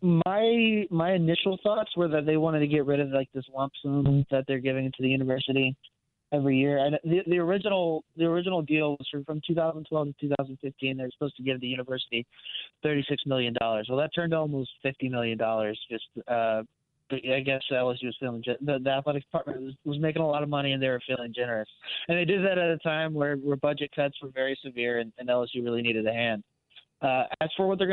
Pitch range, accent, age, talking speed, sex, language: 130-155 Hz, American, 20-39, 220 wpm, male, English